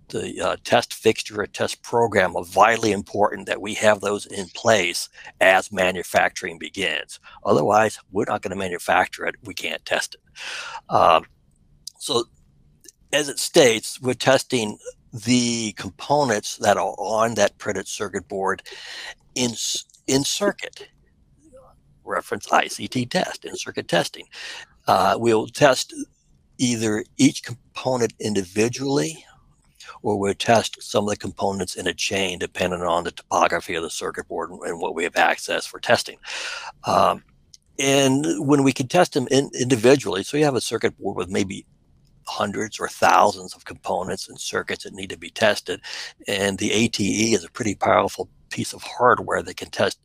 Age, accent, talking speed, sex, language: 60-79, American, 155 wpm, male, English